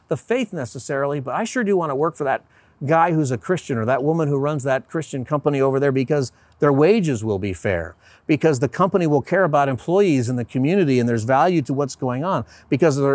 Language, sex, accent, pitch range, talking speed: English, male, American, 110-145 Hz, 225 wpm